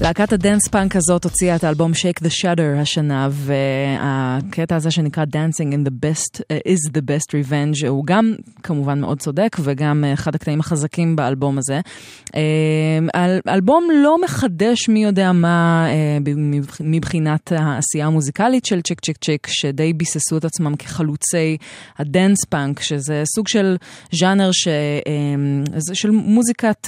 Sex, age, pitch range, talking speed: female, 20-39, 145-185 Hz, 130 wpm